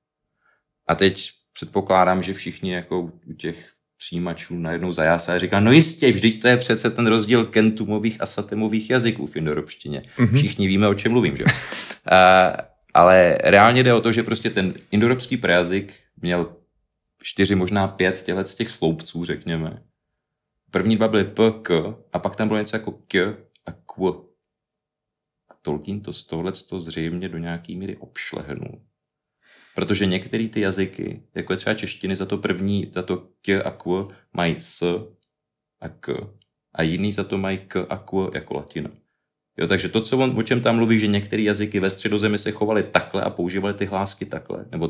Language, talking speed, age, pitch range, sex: Czech, 170 wpm, 30-49, 90-110 Hz, male